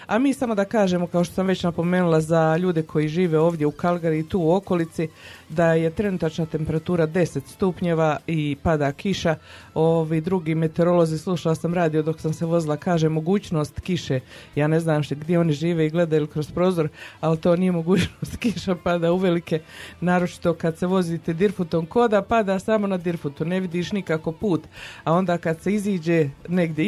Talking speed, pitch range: 185 wpm, 160-185 Hz